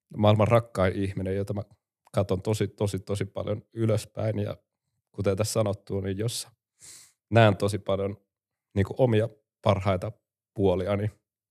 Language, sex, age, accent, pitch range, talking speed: Finnish, male, 30-49, native, 100-115 Hz, 125 wpm